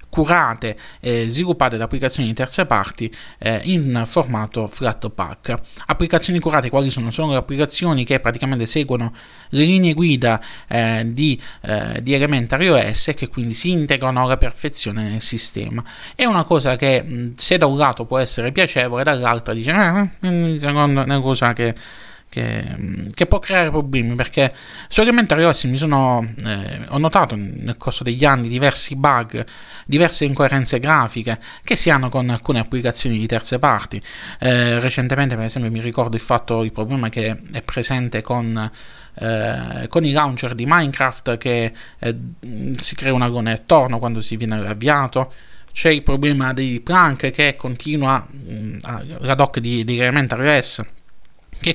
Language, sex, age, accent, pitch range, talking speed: Italian, male, 20-39, native, 115-145 Hz, 155 wpm